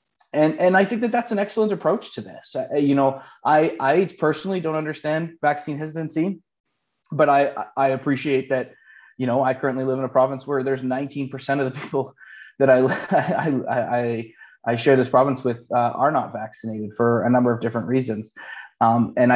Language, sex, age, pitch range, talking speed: English, male, 20-39, 115-135 Hz, 190 wpm